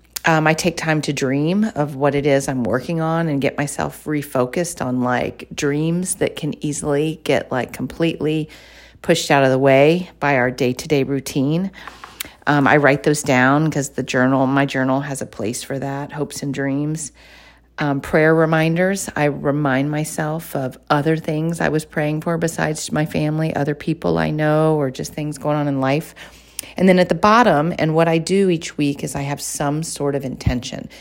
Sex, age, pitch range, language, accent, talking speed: female, 40-59, 135-160 Hz, English, American, 190 wpm